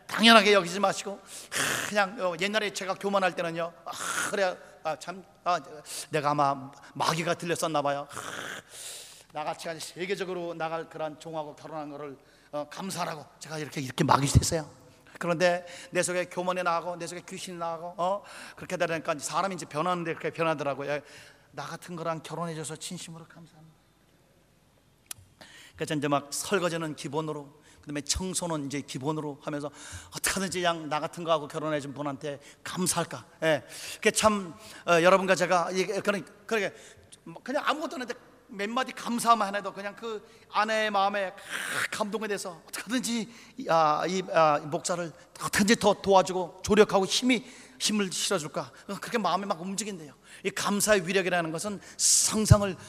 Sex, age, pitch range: male, 40-59, 155-195 Hz